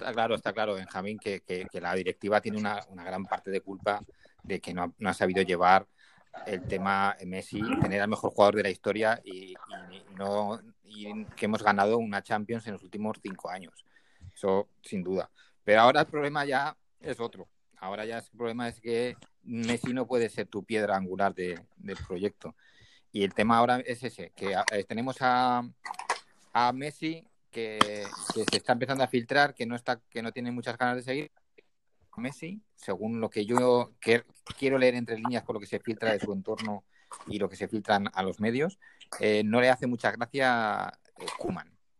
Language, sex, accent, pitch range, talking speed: Spanish, male, Spanish, 100-125 Hz, 195 wpm